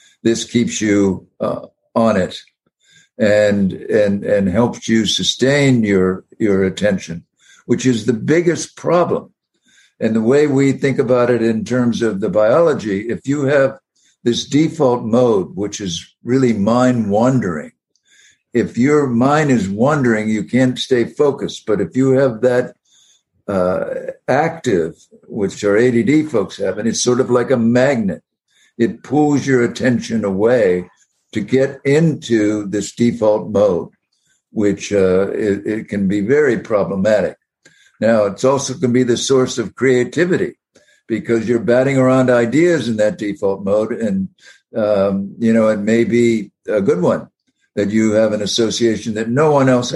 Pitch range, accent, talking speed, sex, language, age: 105-130 Hz, American, 155 wpm, male, English, 60-79